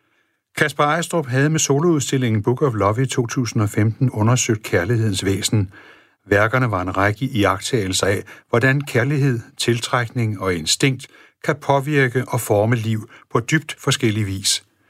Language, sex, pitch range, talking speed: Danish, male, 105-135 Hz, 135 wpm